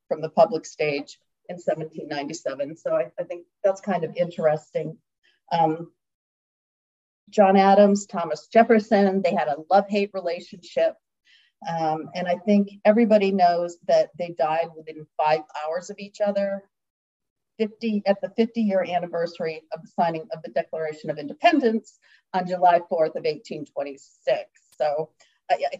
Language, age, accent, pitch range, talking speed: English, 40-59, American, 160-200 Hz, 140 wpm